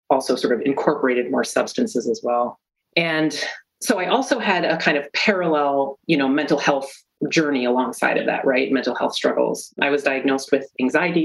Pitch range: 130-165 Hz